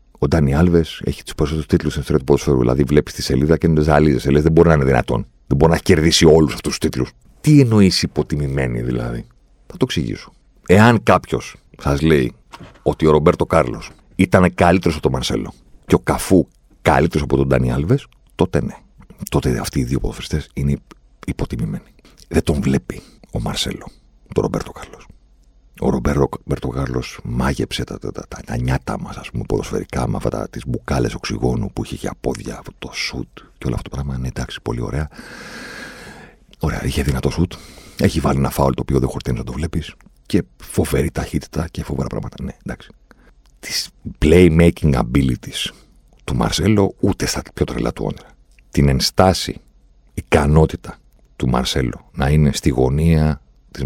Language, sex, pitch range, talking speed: Greek, male, 65-80 Hz, 175 wpm